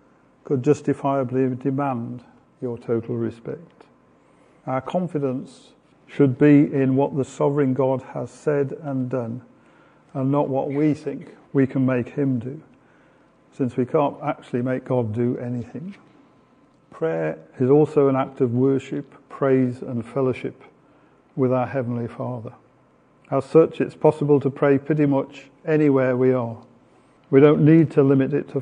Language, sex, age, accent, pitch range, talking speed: English, male, 50-69, British, 130-145 Hz, 145 wpm